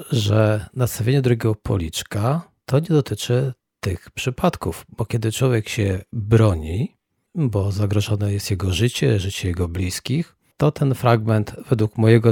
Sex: male